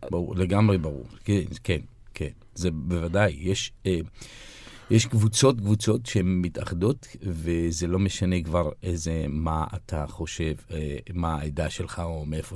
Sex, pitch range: male, 90-120 Hz